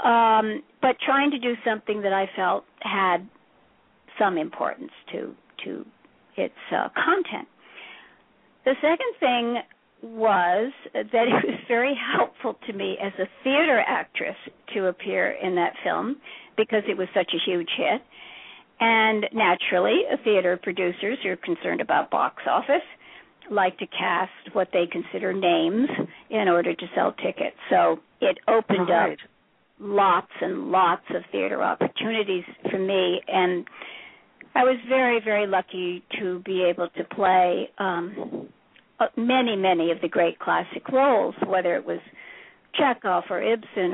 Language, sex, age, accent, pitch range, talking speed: English, female, 60-79, American, 185-245 Hz, 140 wpm